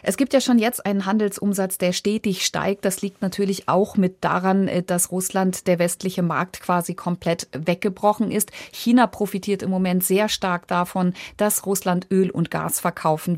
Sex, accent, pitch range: female, German, 175-200 Hz